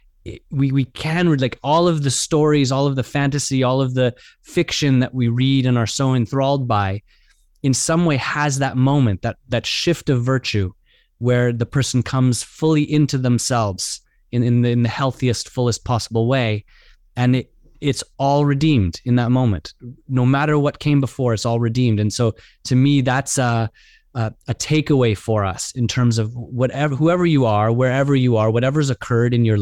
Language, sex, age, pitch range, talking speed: English, male, 20-39, 115-135 Hz, 190 wpm